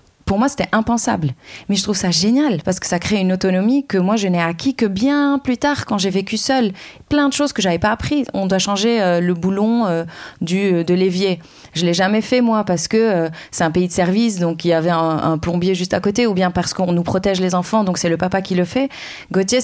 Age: 30-49